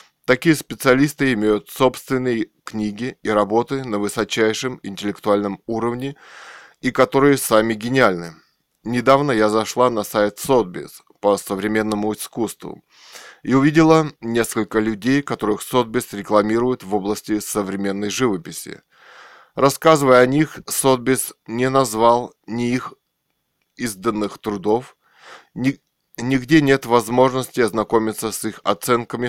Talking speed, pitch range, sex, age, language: 110 wpm, 105-130 Hz, male, 20-39, Russian